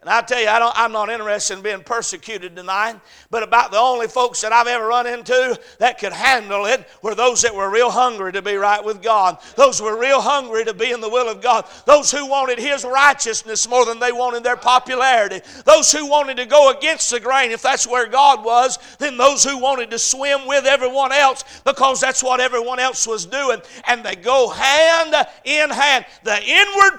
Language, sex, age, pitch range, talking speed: English, male, 50-69, 240-310 Hz, 220 wpm